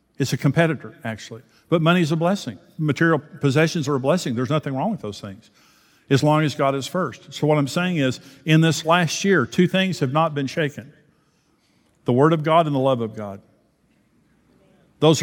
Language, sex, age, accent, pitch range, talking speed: English, male, 50-69, American, 130-160 Hz, 200 wpm